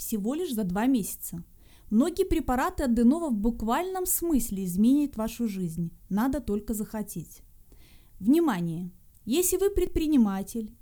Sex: female